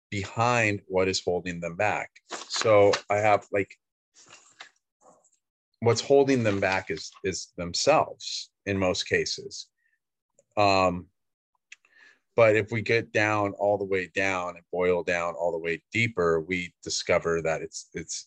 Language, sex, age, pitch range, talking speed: English, male, 30-49, 90-115 Hz, 140 wpm